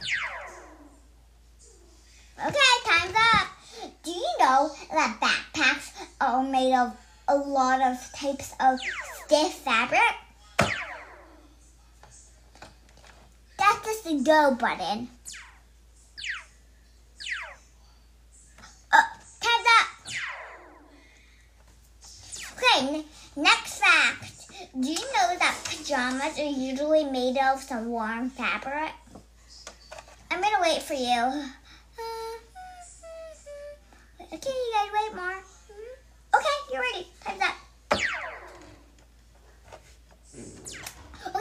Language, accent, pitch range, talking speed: English, American, 260-335 Hz, 75 wpm